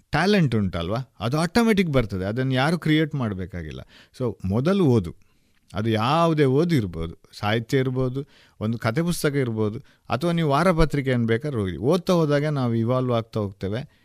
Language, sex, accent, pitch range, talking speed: Kannada, male, native, 110-160 Hz, 150 wpm